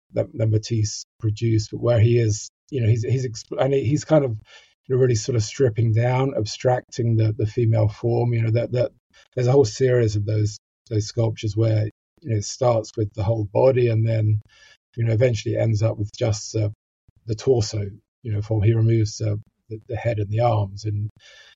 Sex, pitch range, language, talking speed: male, 110-120 Hz, English, 210 wpm